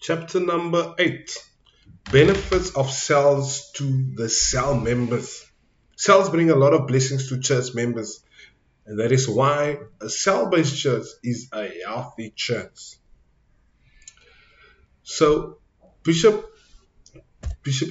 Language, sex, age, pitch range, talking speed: English, male, 20-39, 110-140 Hz, 115 wpm